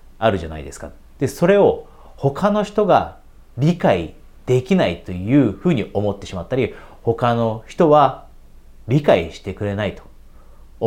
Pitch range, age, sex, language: 95-145 Hz, 40-59, male, Japanese